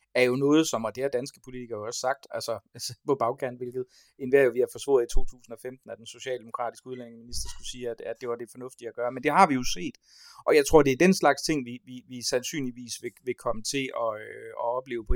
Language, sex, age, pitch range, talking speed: Danish, male, 30-49, 115-140 Hz, 255 wpm